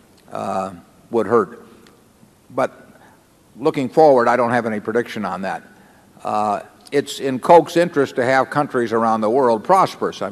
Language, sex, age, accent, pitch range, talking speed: English, male, 50-69, American, 105-125 Hz, 150 wpm